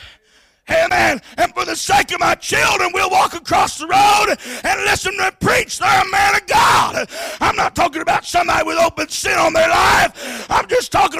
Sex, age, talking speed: male, 50-69, 200 wpm